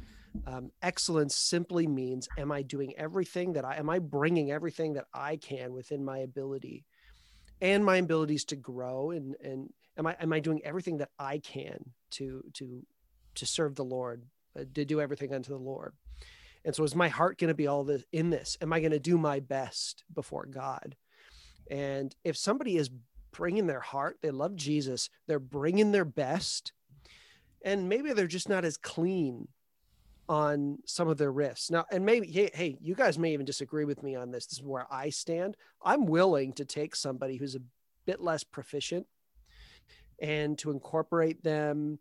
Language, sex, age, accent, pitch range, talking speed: English, male, 30-49, American, 135-165 Hz, 185 wpm